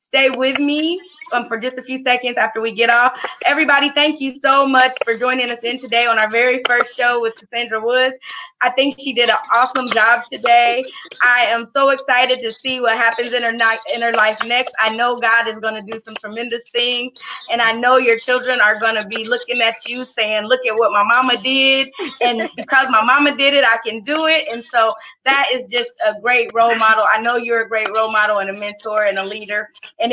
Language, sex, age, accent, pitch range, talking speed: English, female, 20-39, American, 230-270 Hz, 225 wpm